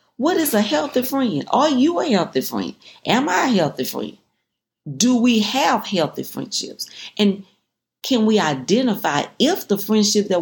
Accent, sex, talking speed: American, female, 160 wpm